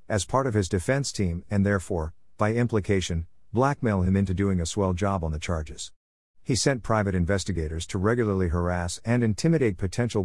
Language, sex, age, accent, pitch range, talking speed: English, male, 50-69, American, 90-110 Hz, 175 wpm